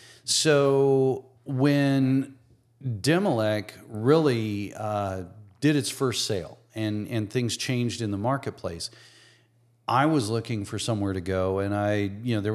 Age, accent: 40-59, American